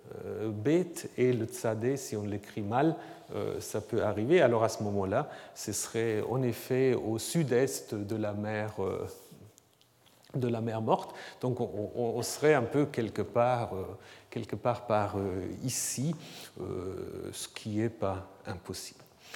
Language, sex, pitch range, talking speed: French, male, 120-155 Hz, 135 wpm